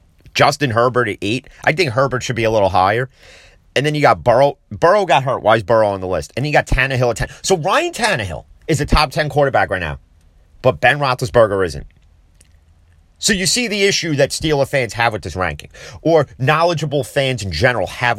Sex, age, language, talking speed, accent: male, 30-49, English, 215 wpm, American